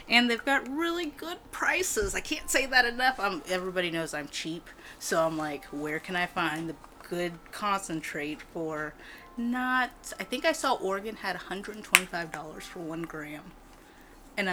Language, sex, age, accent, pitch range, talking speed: English, female, 30-49, American, 170-245 Hz, 165 wpm